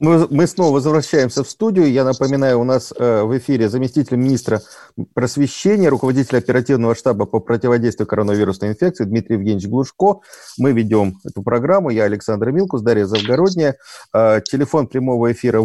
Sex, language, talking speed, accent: male, Russian, 140 wpm, native